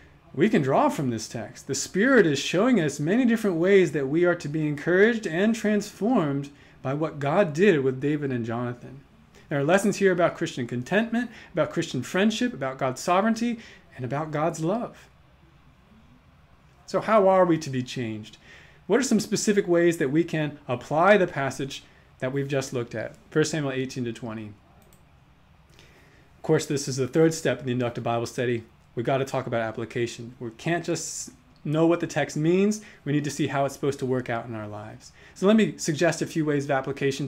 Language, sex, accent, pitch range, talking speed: English, male, American, 125-165 Hz, 200 wpm